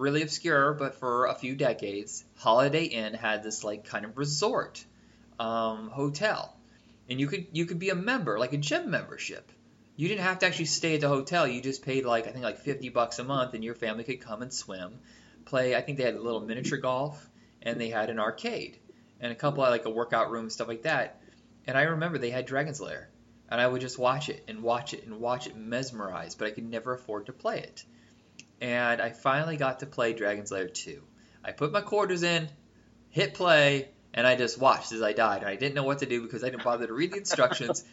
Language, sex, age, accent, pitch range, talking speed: English, male, 20-39, American, 115-165 Hz, 230 wpm